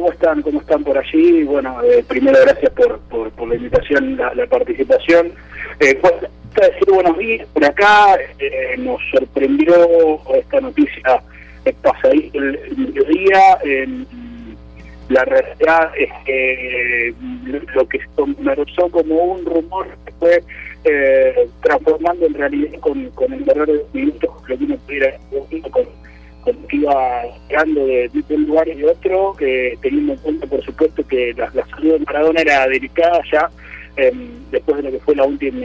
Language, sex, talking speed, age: Spanish, male, 170 wpm, 40-59